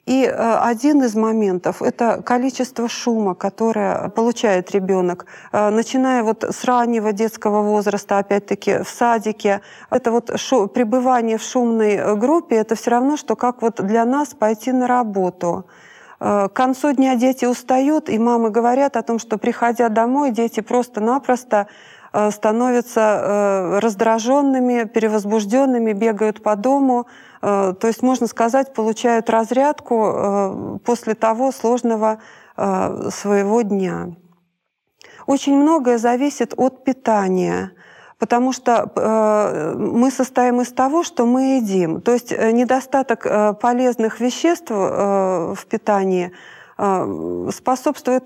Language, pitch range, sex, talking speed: Russian, 215-255 Hz, female, 110 wpm